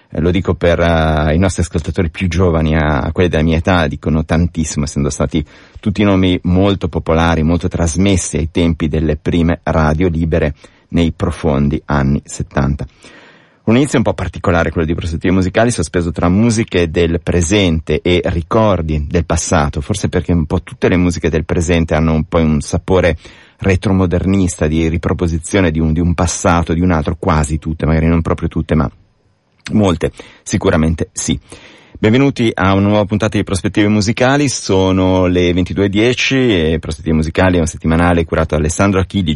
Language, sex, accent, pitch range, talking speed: Italian, male, native, 80-95 Hz, 165 wpm